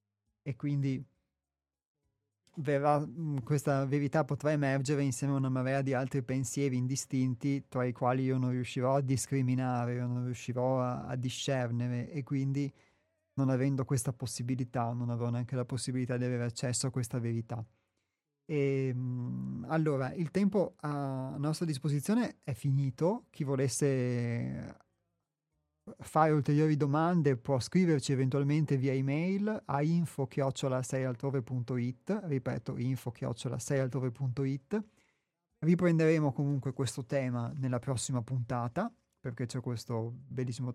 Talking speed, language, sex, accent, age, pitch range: 120 wpm, Italian, male, native, 30-49, 125-145 Hz